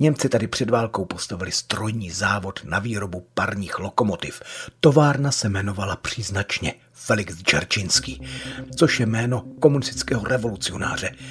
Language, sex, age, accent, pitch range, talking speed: Czech, male, 40-59, native, 105-140 Hz, 115 wpm